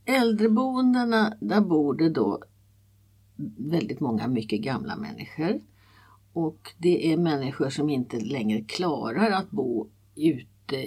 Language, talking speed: Swedish, 115 wpm